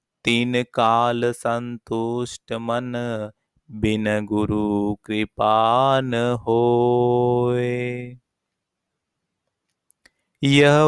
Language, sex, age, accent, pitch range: Hindi, male, 30-49, native, 120-135 Hz